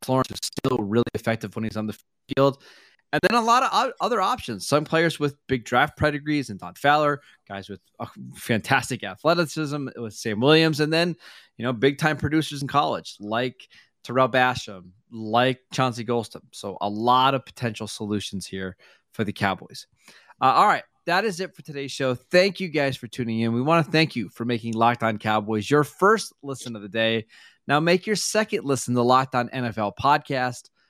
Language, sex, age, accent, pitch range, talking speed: English, male, 20-39, American, 115-145 Hz, 190 wpm